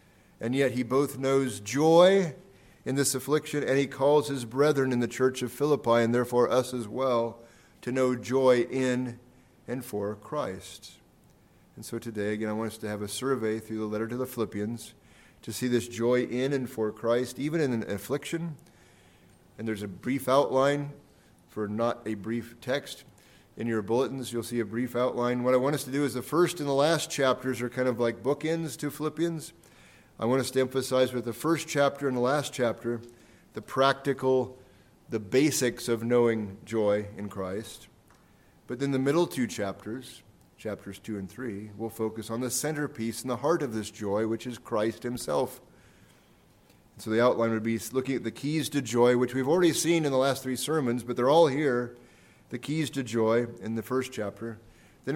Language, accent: English, American